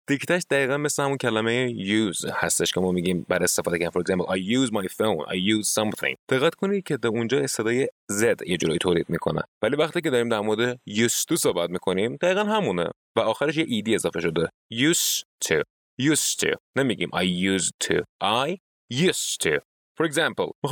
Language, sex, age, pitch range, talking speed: Persian, male, 30-49, 105-165 Hz, 175 wpm